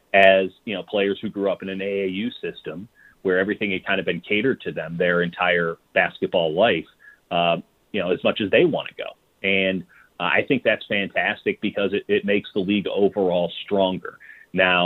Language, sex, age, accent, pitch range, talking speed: English, male, 30-49, American, 95-105 Hz, 200 wpm